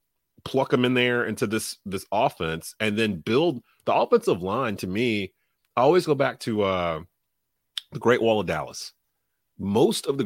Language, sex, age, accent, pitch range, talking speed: English, male, 30-49, American, 95-120 Hz, 175 wpm